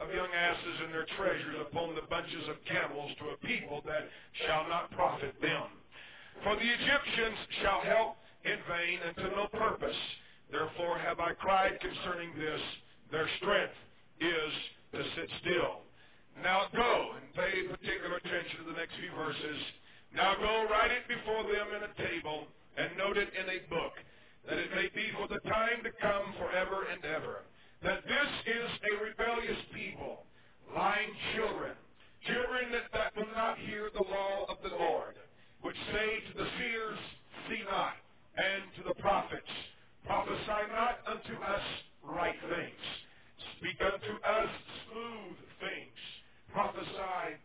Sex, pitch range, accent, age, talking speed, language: male, 175-220 Hz, American, 50-69, 155 wpm, English